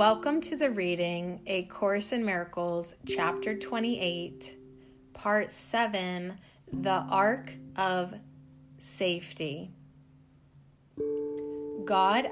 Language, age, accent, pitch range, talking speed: English, 30-49, American, 140-205 Hz, 85 wpm